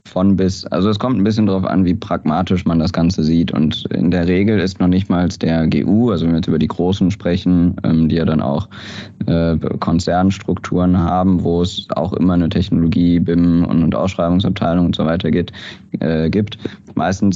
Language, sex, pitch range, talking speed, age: German, male, 85-100 Hz, 185 wpm, 20-39